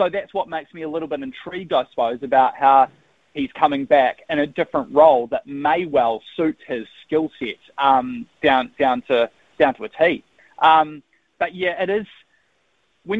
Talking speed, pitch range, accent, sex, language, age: 185 wpm, 135-160 Hz, Australian, male, English, 20-39